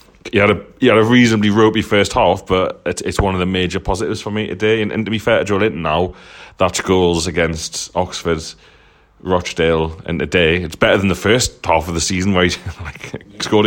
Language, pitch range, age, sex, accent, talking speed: English, 80-105 Hz, 30-49, male, British, 220 wpm